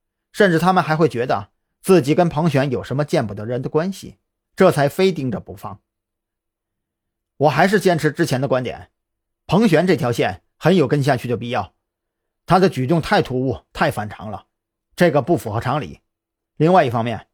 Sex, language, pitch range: male, Chinese, 115-180 Hz